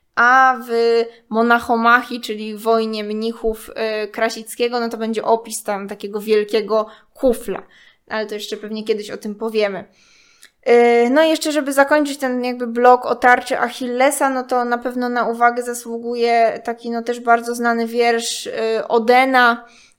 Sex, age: female, 20-39